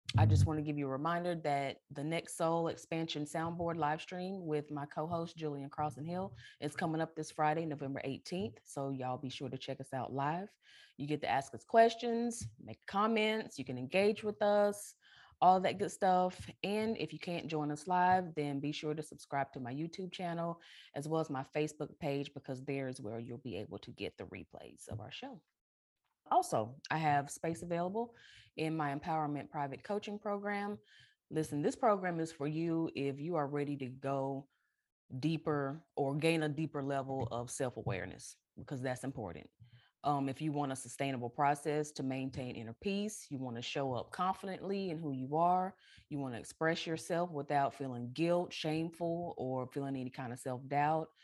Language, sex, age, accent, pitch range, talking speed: English, female, 20-39, American, 135-170 Hz, 190 wpm